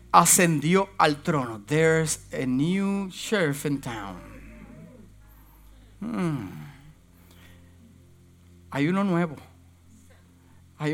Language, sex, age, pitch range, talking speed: Spanish, male, 50-69, 170-250 Hz, 75 wpm